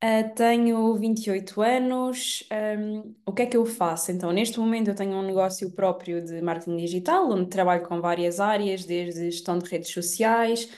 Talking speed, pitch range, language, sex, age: 165 wpm, 175-215 Hz, Portuguese, female, 20-39